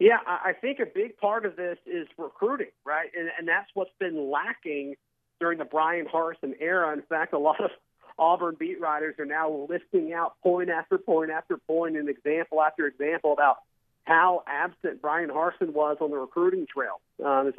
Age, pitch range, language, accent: 40-59, 140-175 Hz, English, American